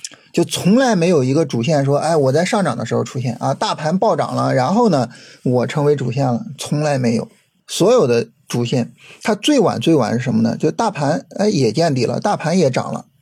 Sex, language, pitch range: male, Chinese, 130-155 Hz